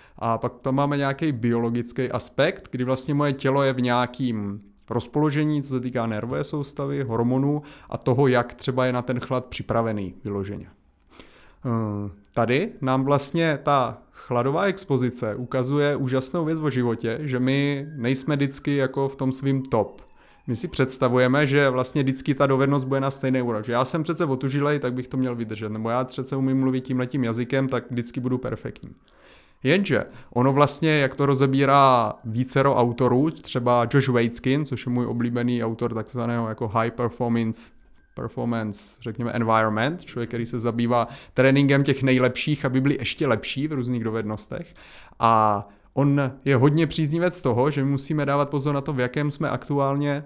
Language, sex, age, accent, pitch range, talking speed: Czech, male, 30-49, native, 120-140 Hz, 165 wpm